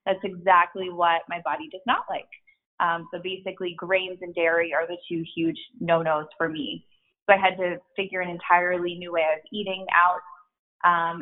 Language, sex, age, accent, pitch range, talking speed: English, female, 20-39, American, 165-185 Hz, 180 wpm